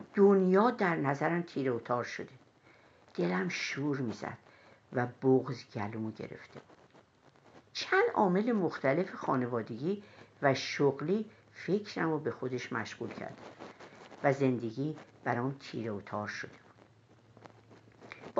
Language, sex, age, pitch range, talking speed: Persian, female, 50-69, 120-200 Hz, 110 wpm